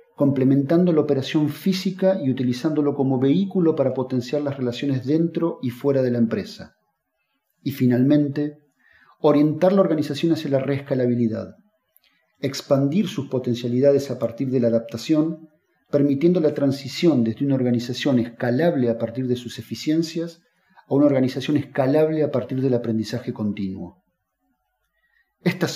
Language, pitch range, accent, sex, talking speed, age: Spanish, 125-155 Hz, Argentinian, male, 130 wpm, 40-59